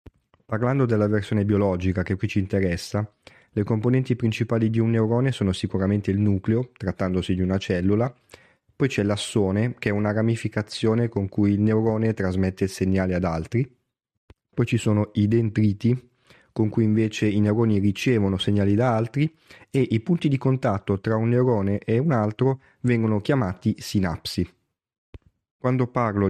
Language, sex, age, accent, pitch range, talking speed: Italian, male, 30-49, native, 95-115 Hz, 155 wpm